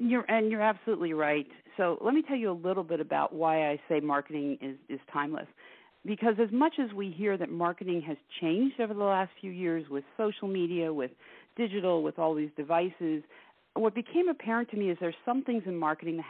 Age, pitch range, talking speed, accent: 50-69, 160-220 Hz, 215 wpm, American